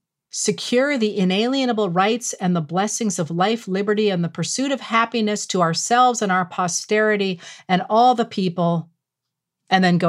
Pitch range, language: 165-215 Hz, English